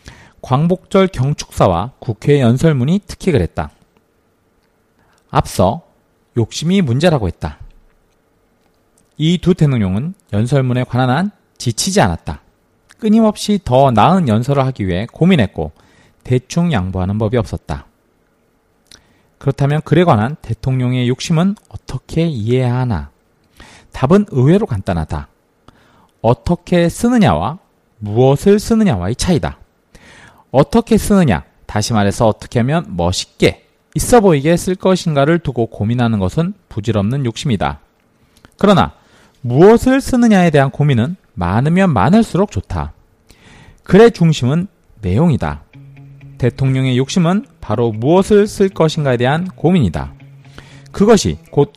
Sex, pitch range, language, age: male, 115-180 Hz, Korean, 40-59